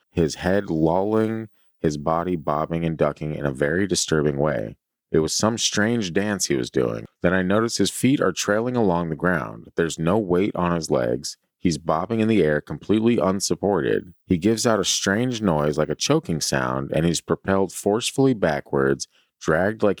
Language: English